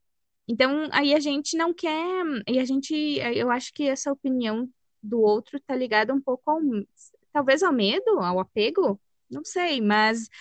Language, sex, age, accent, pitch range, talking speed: Portuguese, female, 20-39, Brazilian, 220-290 Hz, 165 wpm